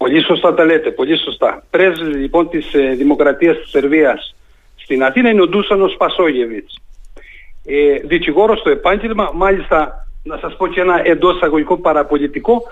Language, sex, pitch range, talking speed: Greek, male, 180-285 Hz, 150 wpm